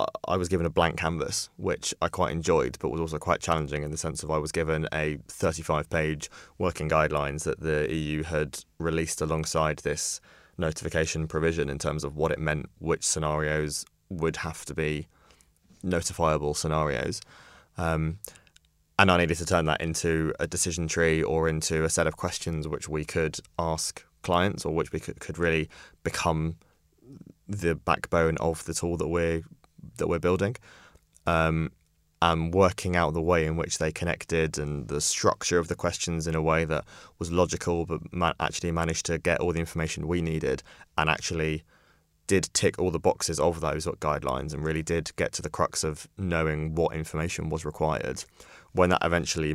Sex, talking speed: male, 180 wpm